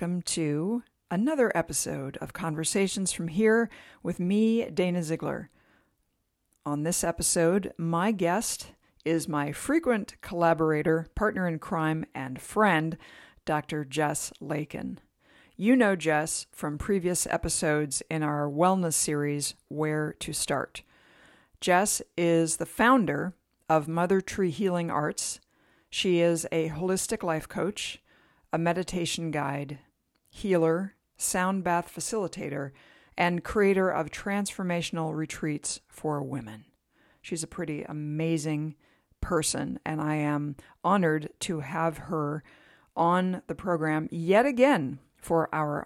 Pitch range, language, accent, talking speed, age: 155-185 Hz, English, American, 120 wpm, 50-69